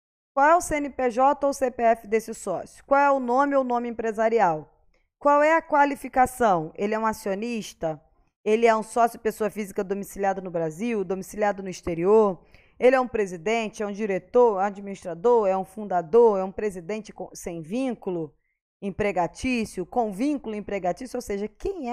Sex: female